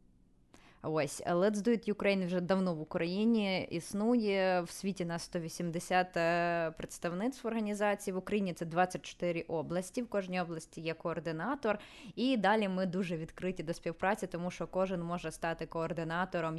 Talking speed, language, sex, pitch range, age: 150 wpm, Ukrainian, female, 180-215 Hz, 20-39